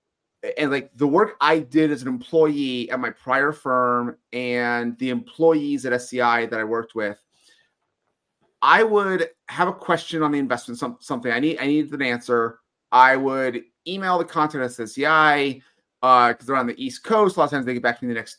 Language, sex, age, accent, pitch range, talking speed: English, male, 30-49, American, 125-160 Hz, 205 wpm